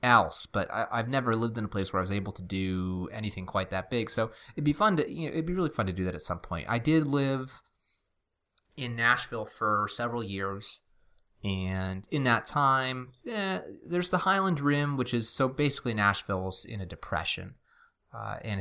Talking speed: 205 wpm